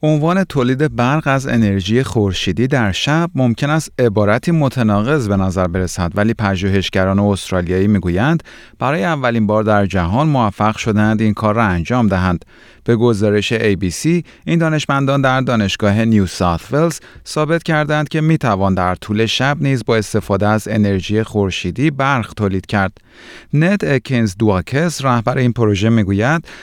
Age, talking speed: 30-49, 145 wpm